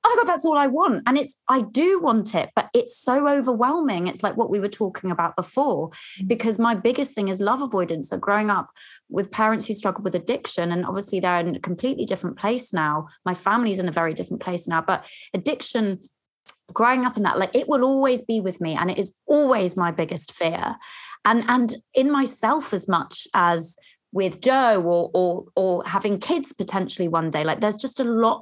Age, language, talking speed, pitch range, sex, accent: 20-39, English, 210 wpm, 175-230 Hz, female, British